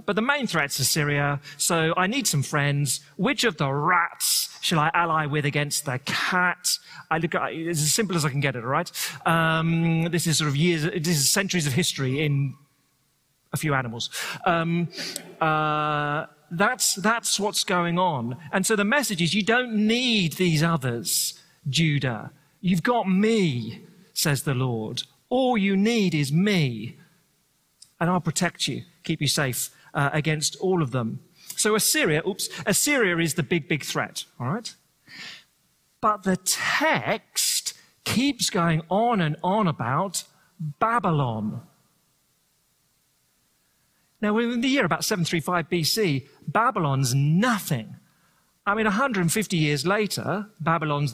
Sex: male